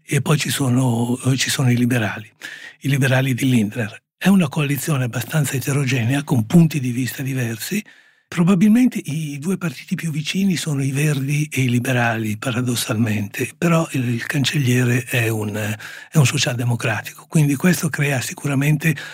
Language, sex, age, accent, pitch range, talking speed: Italian, male, 60-79, native, 125-155 Hz, 145 wpm